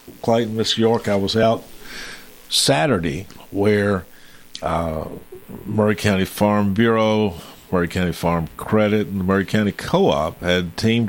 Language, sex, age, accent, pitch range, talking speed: English, male, 50-69, American, 80-100 Hz, 130 wpm